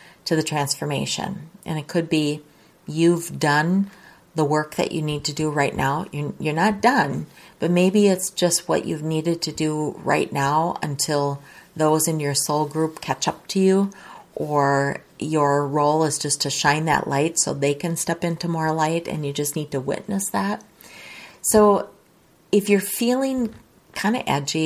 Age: 40-59